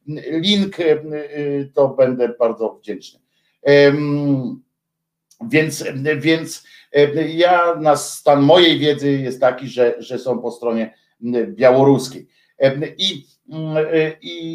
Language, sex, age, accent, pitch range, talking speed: Polish, male, 50-69, native, 135-165 Hz, 90 wpm